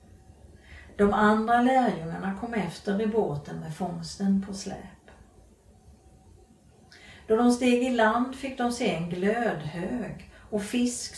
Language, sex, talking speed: Swedish, female, 125 wpm